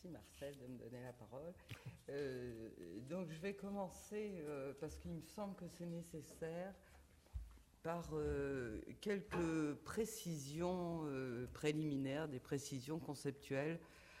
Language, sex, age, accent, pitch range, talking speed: French, female, 50-69, French, 135-180 Hz, 125 wpm